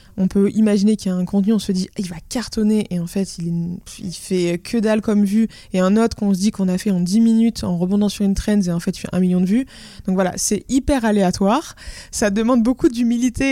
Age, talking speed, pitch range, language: 20-39, 265 wpm, 185-220 Hz, French